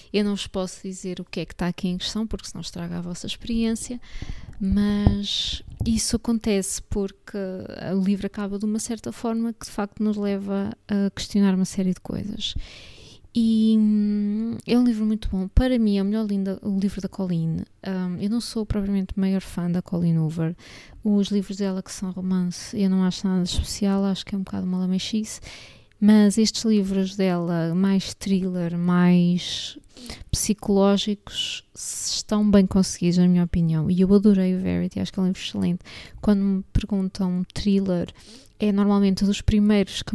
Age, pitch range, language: 20-39, 180-205 Hz, Portuguese